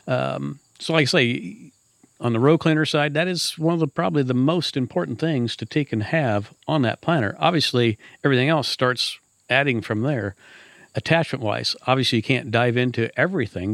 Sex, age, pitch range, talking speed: male, 50-69, 115-135 Hz, 180 wpm